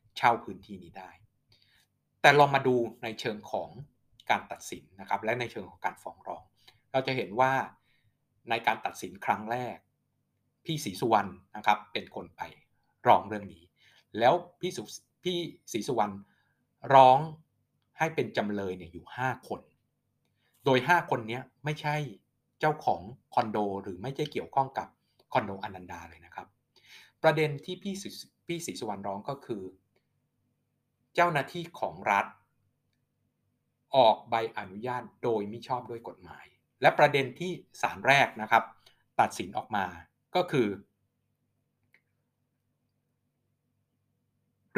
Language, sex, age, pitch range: Thai, male, 60-79, 105-135 Hz